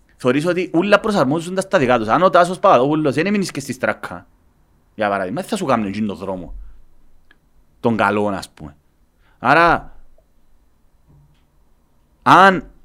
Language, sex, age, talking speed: Greek, male, 30-49, 130 wpm